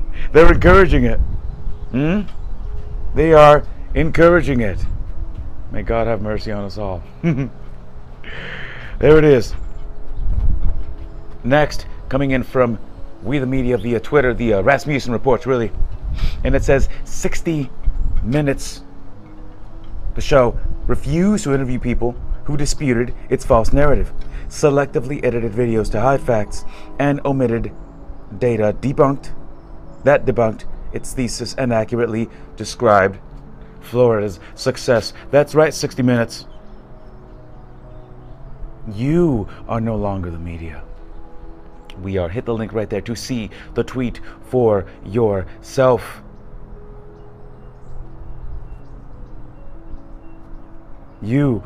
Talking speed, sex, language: 105 wpm, male, English